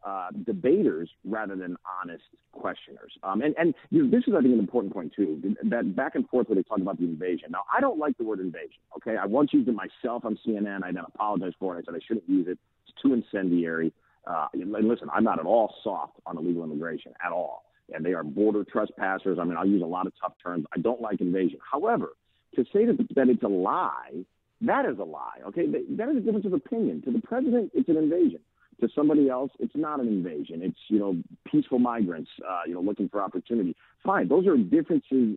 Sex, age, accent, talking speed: male, 50-69, American, 230 wpm